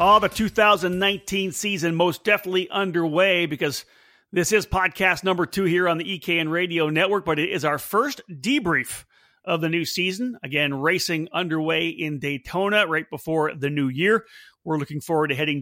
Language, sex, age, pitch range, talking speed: English, male, 40-59, 150-195 Hz, 170 wpm